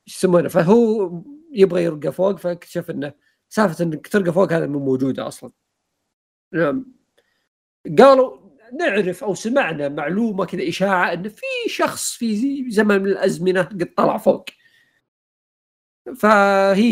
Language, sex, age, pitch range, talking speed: Arabic, male, 50-69, 145-210 Hz, 115 wpm